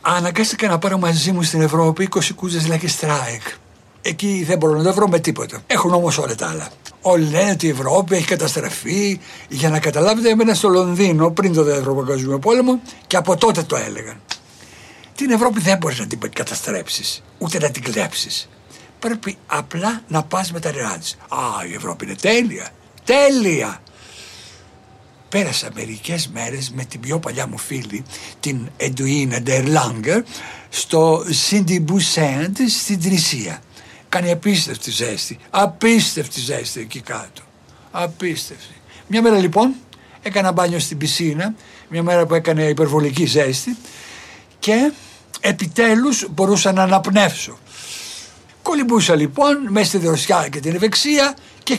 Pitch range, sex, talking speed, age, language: 150-200 Hz, male, 140 wpm, 60-79, Greek